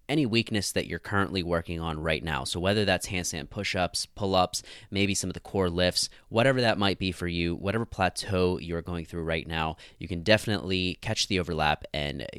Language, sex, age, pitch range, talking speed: English, male, 20-39, 85-105 Hz, 200 wpm